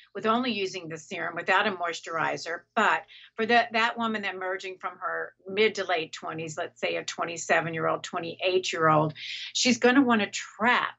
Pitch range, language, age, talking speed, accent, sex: 170-220 Hz, English, 50-69, 170 wpm, American, female